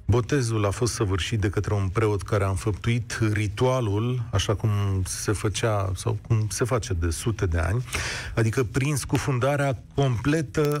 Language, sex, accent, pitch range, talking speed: Romanian, male, native, 100-135 Hz, 155 wpm